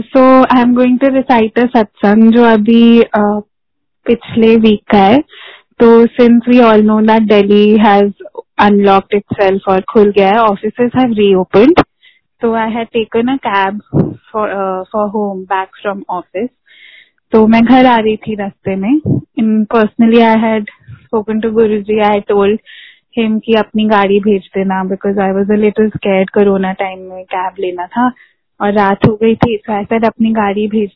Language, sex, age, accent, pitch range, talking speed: Hindi, female, 10-29, native, 200-230 Hz, 125 wpm